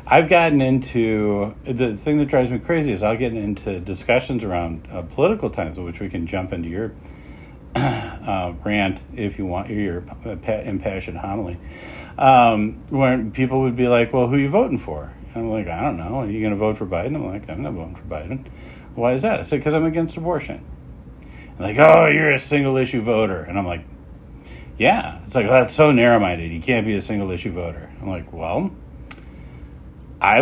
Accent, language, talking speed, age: American, English, 200 wpm, 50-69